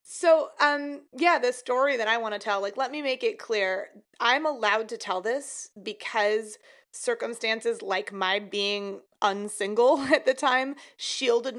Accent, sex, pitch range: American, female, 195-245 Hz